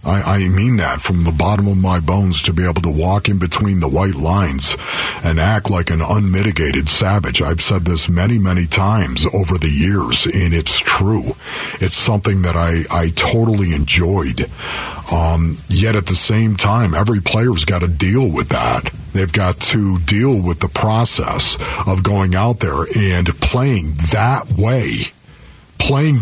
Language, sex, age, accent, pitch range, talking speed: English, male, 50-69, American, 95-130 Hz, 170 wpm